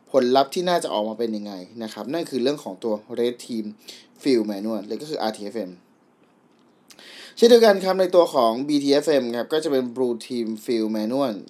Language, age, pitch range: Thai, 20-39, 110-145 Hz